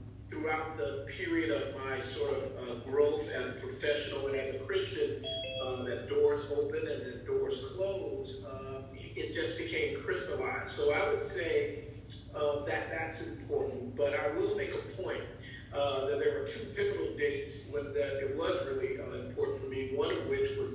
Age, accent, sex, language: 40-59, American, male, English